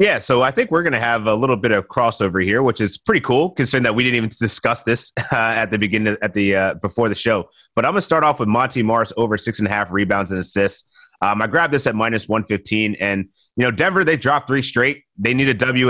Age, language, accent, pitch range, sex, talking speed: 30-49, English, American, 105-130 Hz, male, 275 wpm